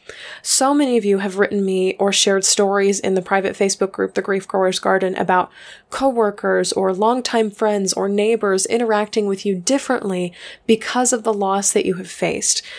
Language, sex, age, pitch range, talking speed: English, female, 20-39, 195-235 Hz, 180 wpm